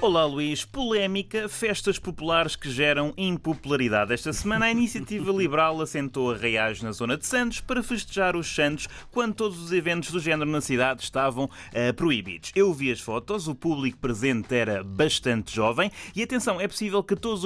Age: 20-39